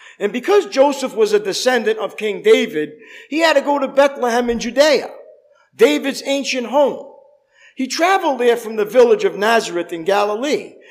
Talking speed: 165 wpm